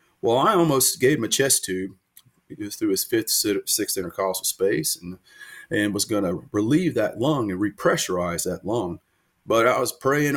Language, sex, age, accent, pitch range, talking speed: English, male, 30-49, American, 100-155 Hz, 185 wpm